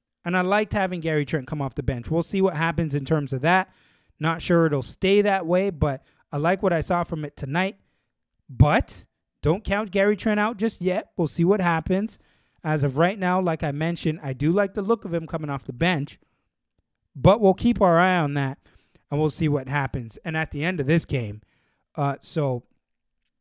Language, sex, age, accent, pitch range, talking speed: English, male, 20-39, American, 130-175 Hz, 215 wpm